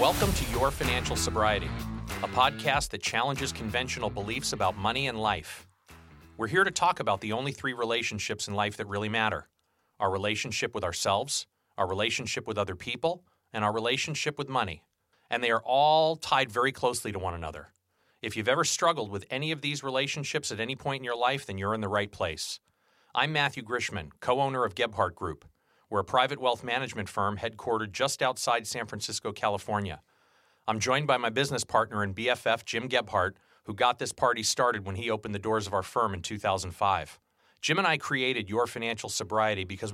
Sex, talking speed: male, 190 wpm